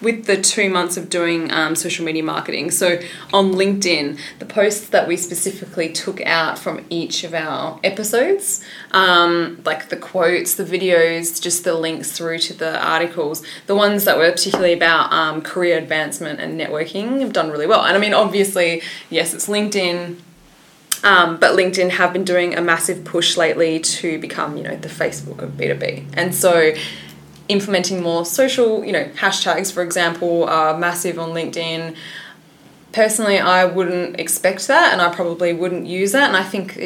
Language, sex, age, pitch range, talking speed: English, female, 20-39, 165-185 Hz, 175 wpm